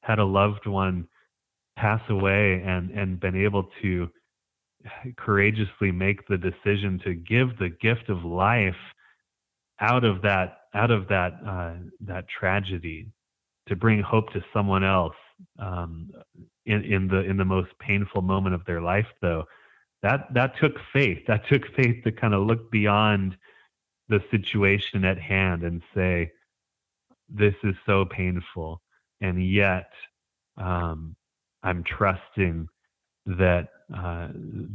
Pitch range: 90-105 Hz